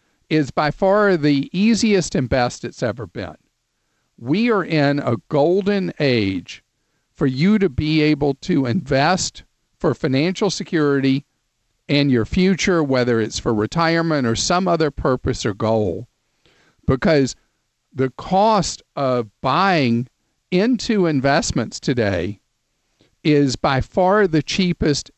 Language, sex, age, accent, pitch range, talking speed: English, male, 50-69, American, 130-180 Hz, 125 wpm